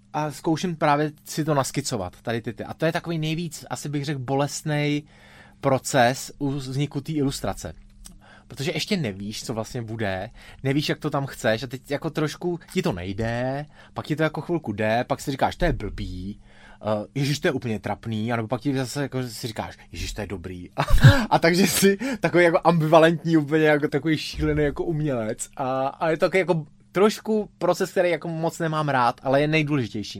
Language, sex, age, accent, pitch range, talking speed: Czech, male, 20-39, native, 120-160 Hz, 200 wpm